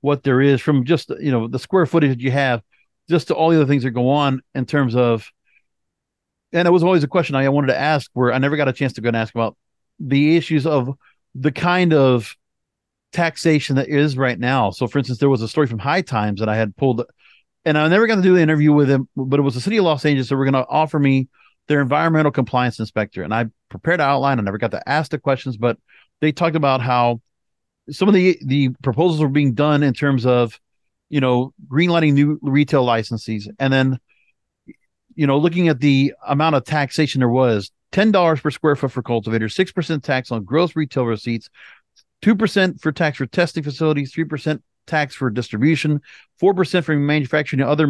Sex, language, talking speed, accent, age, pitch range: male, English, 215 wpm, American, 40-59, 130-160 Hz